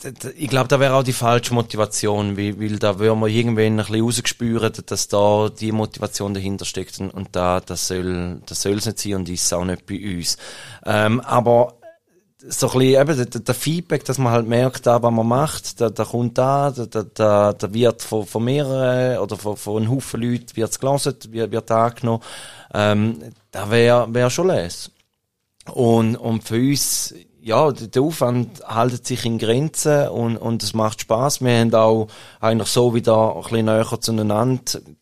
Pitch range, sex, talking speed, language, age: 110-125 Hz, male, 185 wpm, German, 20-39